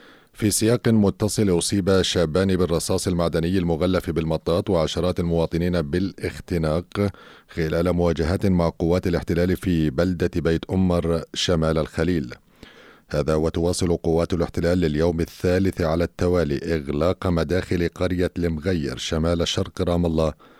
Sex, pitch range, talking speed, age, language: male, 85-95 Hz, 115 wpm, 40-59, Arabic